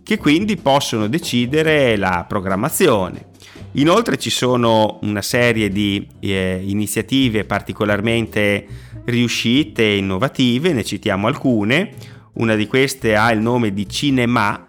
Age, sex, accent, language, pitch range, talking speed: 30-49, male, native, Italian, 100-120 Hz, 120 wpm